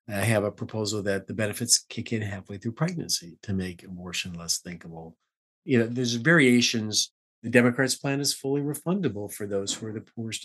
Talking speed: 190 wpm